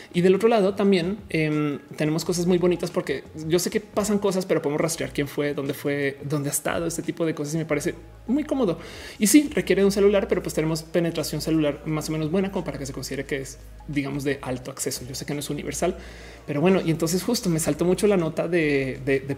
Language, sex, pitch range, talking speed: Spanish, male, 145-180 Hz, 250 wpm